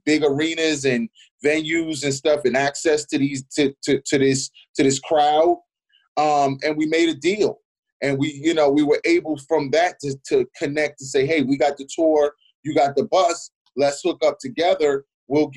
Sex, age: male, 30-49